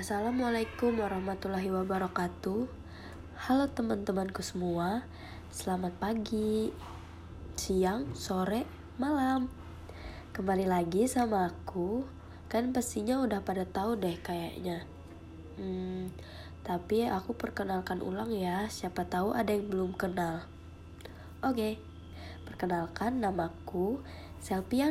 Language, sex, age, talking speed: Indonesian, female, 20-39, 95 wpm